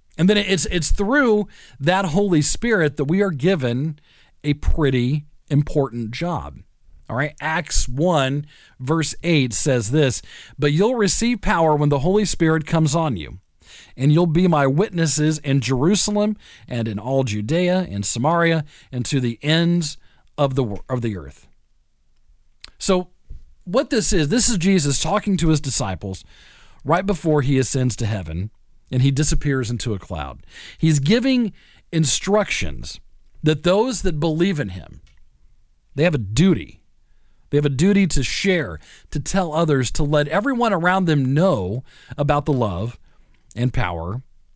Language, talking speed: English, 150 wpm